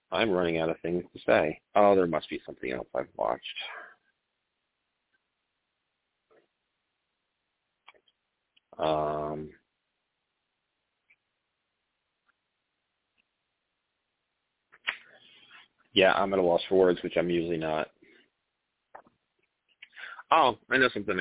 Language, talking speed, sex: English, 90 wpm, male